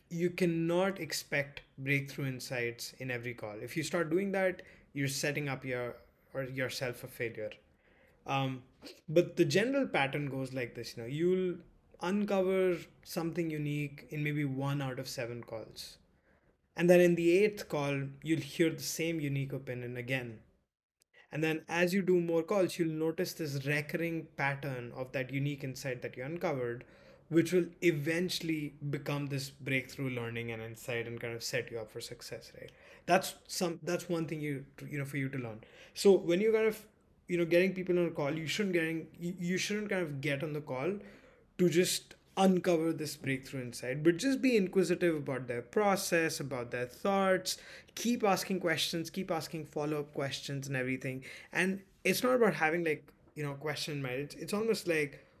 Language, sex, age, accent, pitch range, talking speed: English, male, 20-39, Indian, 135-175 Hz, 180 wpm